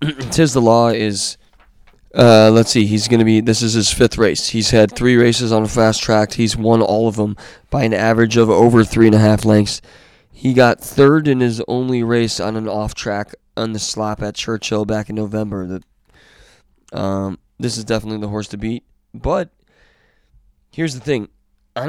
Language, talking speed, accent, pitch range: English, 195 wpm, American, 105-120 Hz